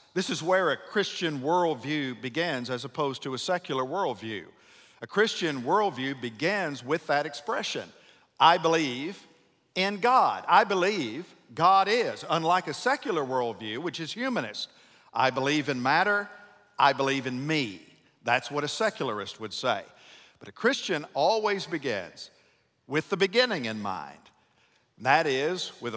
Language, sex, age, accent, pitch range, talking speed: English, male, 50-69, American, 130-170 Hz, 145 wpm